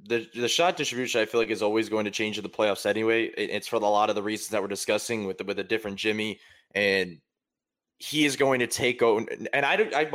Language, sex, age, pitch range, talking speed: English, male, 20-39, 110-145 Hz, 270 wpm